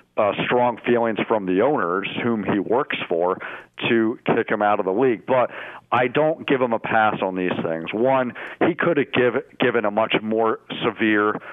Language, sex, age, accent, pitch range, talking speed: English, male, 50-69, American, 105-120 Hz, 185 wpm